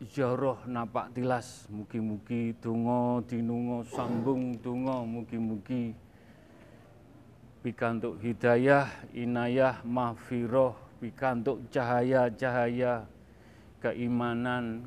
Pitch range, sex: 115-125 Hz, male